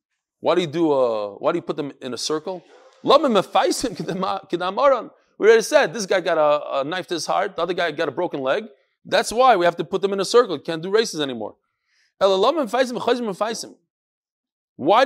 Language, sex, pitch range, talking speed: English, male, 165-280 Hz, 190 wpm